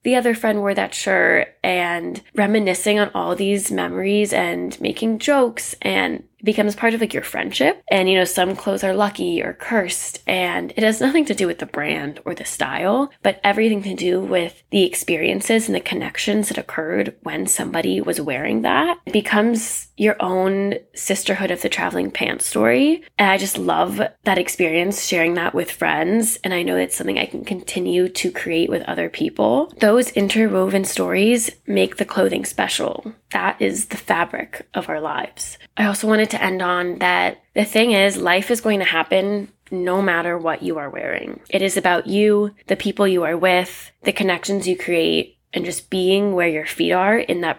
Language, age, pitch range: English, 10-29, 180-220 Hz